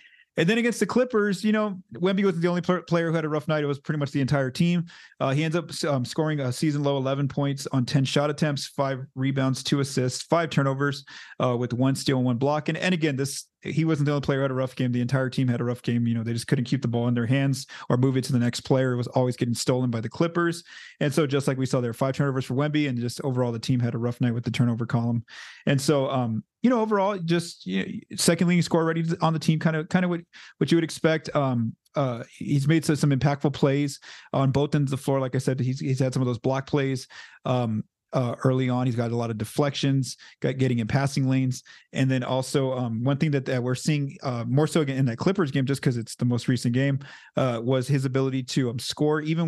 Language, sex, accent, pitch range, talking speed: English, male, American, 125-155 Hz, 270 wpm